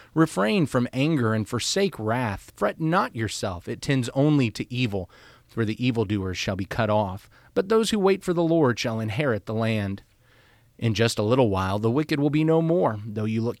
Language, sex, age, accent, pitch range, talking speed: English, male, 30-49, American, 110-145 Hz, 205 wpm